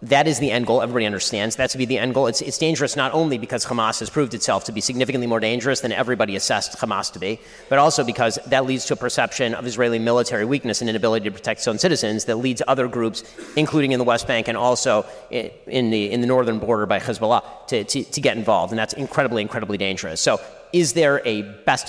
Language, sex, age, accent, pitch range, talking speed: English, male, 30-49, American, 110-140 Hz, 240 wpm